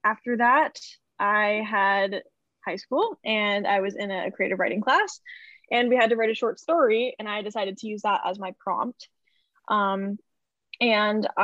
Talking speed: 175 wpm